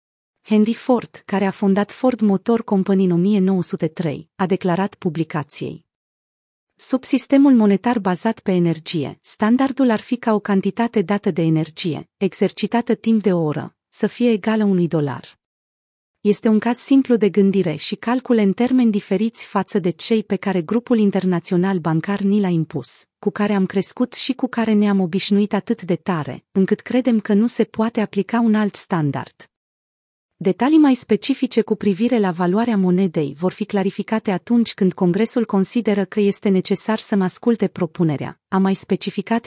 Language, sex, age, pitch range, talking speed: Romanian, female, 30-49, 180-225 Hz, 160 wpm